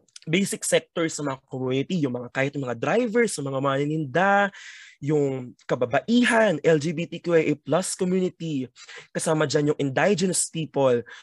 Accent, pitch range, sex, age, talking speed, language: native, 135-190 Hz, male, 20-39, 135 wpm, Filipino